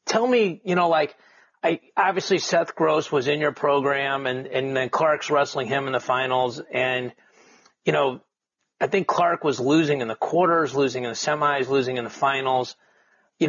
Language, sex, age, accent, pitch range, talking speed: English, male, 40-59, American, 130-160 Hz, 185 wpm